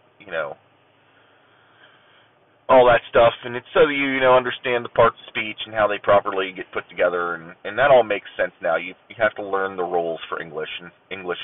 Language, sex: English, male